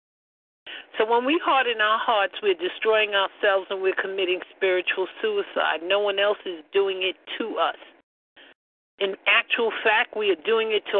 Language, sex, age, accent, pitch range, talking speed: English, male, 50-69, American, 190-240 Hz, 165 wpm